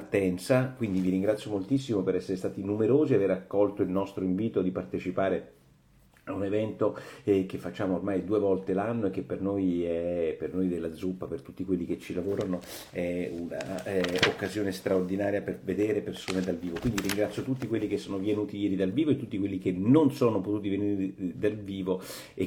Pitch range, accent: 95-115 Hz, native